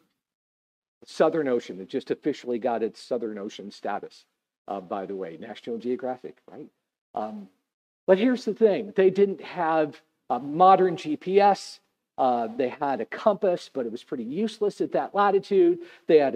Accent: American